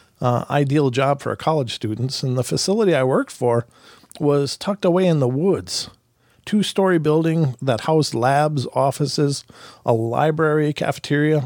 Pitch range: 125-165 Hz